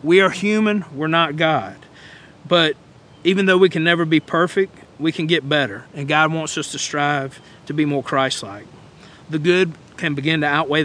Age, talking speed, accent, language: 40-59, 190 wpm, American, English